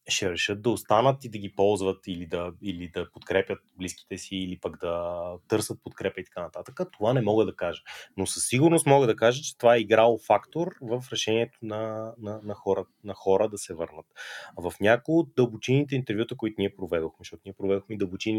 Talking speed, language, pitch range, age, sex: 205 wpm, Bulgarian, 100-130 Hz, 30-49, male